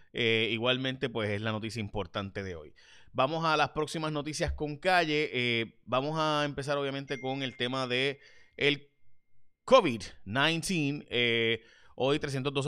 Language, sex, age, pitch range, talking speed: Spanish, male, 30-49, 115-145 Hz, 135 wpm